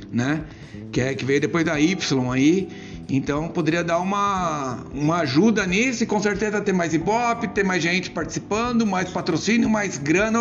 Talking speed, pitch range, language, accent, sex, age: 175 wpm, 150-195 Hz, Portuguese, Brazilian, male, 60-79